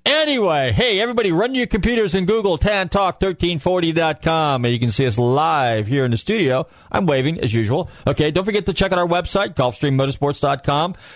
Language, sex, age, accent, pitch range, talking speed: English, male, 40-59, American, 105-155 Hz, 185 wpm